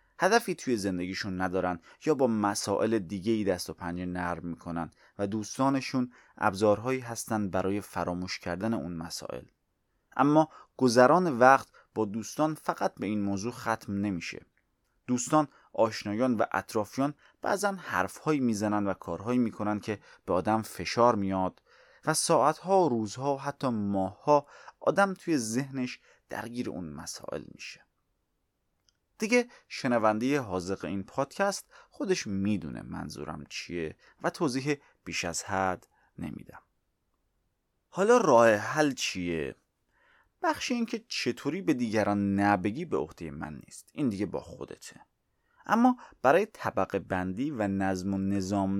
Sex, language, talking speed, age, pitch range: male, Persian, 130 wpm, 30-49, 95-145 Hz